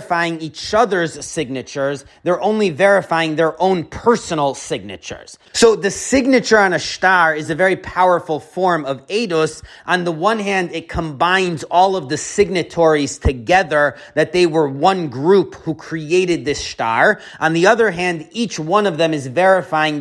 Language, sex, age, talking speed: English, male, 30-49, 160 wpm